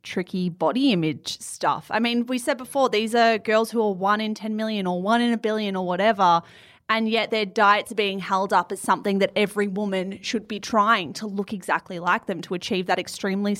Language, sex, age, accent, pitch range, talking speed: English, female, 20-39, Australian, 195-270 Hz, 220 wpm